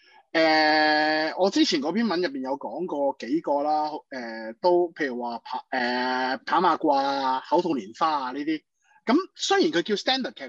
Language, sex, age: Chinese, male, 20-39